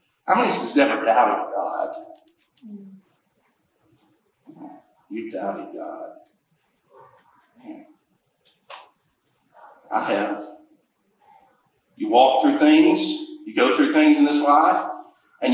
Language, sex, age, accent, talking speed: English, male, 50-69, American, 95 wpm